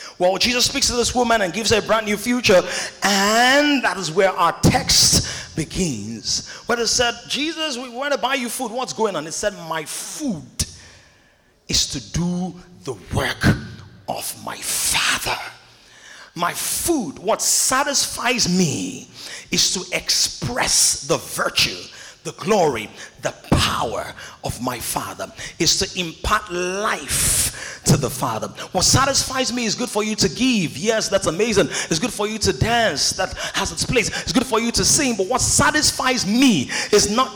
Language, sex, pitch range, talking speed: English, male, 180-240 Hz, 165 wpm